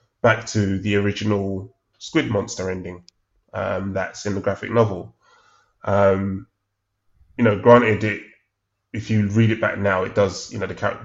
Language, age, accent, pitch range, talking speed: English, 20-39, British, 95-110 Hz, 165 wpm